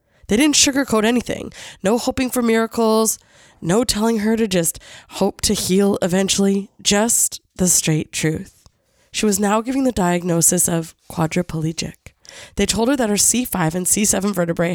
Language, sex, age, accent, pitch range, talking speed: English, female, 20-39, American, 190-250 Hz, 155 wpm